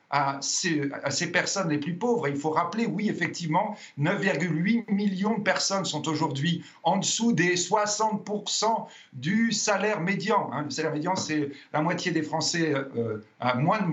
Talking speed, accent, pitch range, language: 175 wpm, French, 150-205 Hz, French